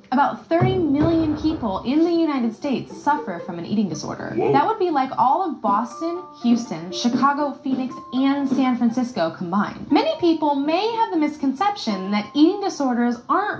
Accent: American